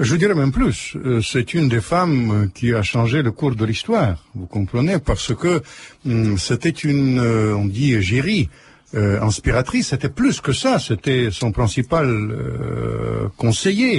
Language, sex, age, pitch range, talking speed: French, male, 60-79, 115-165 Hz, 160 wpm